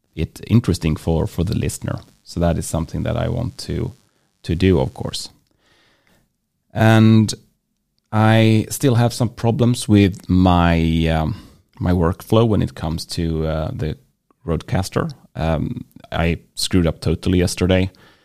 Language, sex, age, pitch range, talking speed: English, male, 30-49, 80-110 Hz, 130 wpm